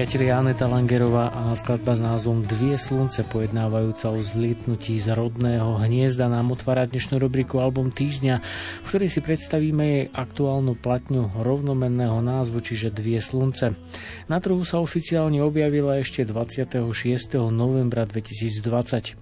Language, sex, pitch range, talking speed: Slovak, male, 115-130 Hz, 130 wpm